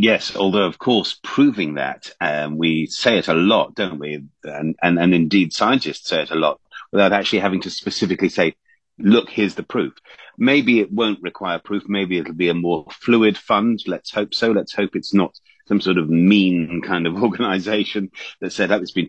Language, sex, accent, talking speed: English, male, British, 200 wpm